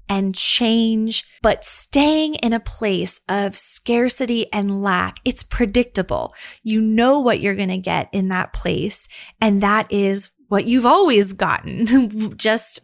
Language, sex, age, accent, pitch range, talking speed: English, female, 20-39, American, 195-235 Hz, 145 wpm